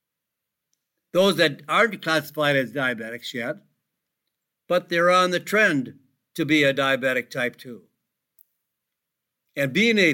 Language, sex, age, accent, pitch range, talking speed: English, male, 60-79, American, 140-180 Hz, 125 wpm